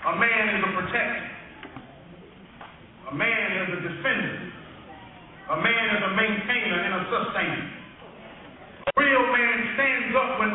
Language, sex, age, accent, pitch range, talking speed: English, male, 40-59, American, 215-255 Hz, 135 wpm